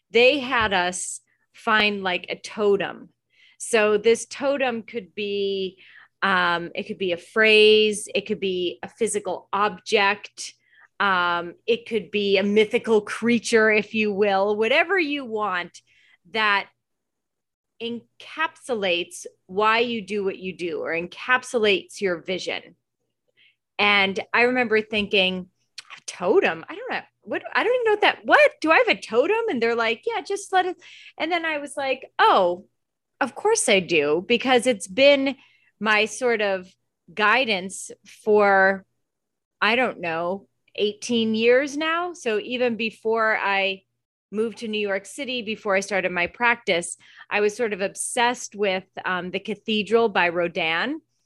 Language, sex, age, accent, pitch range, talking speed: English, female, 30-49, American, 195-245 Hz, 150 wpm